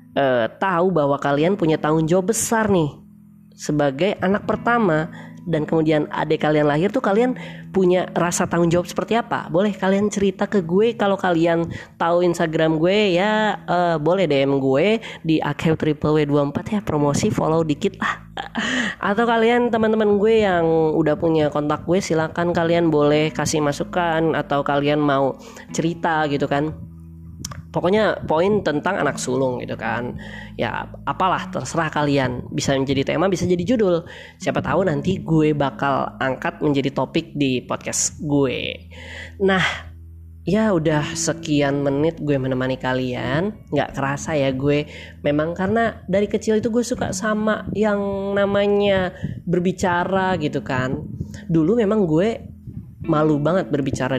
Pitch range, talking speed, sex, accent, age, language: 145-190 Hz, 140 wpm, female, native, 20-39, Indonesian